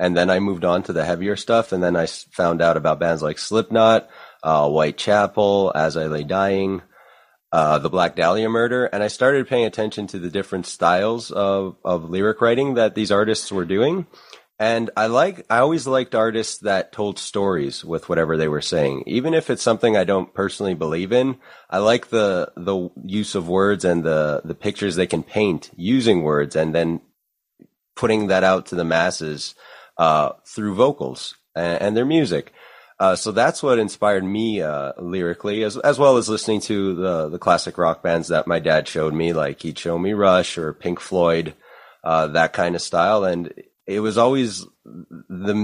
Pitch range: 85-105 Hz